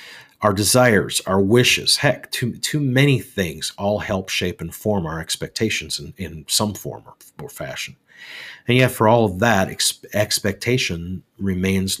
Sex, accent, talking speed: male, American, 160 wpm